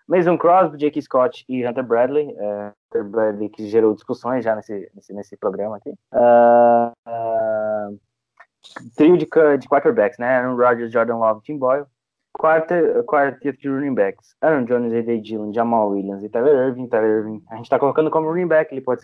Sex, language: male, Portuguese